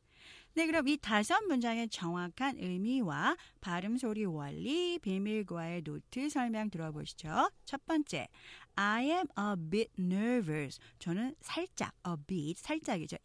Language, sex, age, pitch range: Korean, female, 40-59, 165-260 Hz